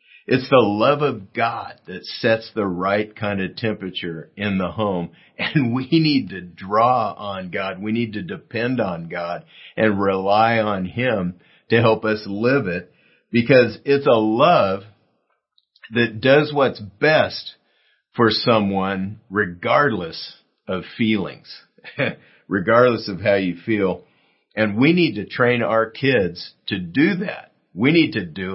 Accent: American